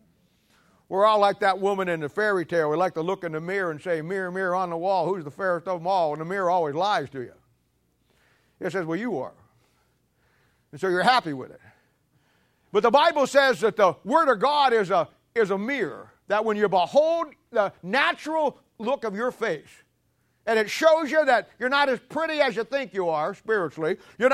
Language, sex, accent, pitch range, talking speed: English, male, American, 160-220 Hz, 215 wpm